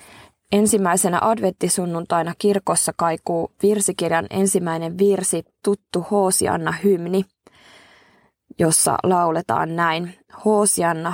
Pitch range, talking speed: 170-200 Hz, 75 wpm